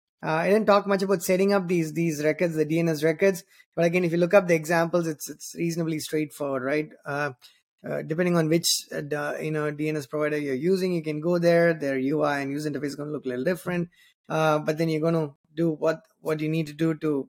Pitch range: 150-180 Hz